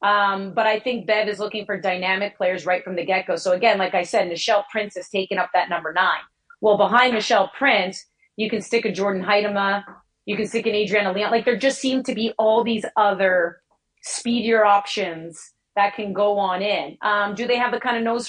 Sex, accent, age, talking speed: female, American, 30-49, 220 wpm